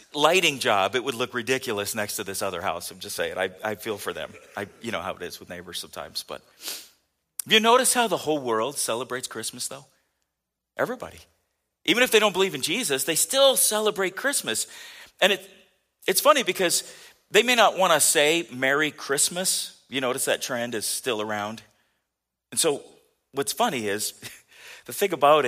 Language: English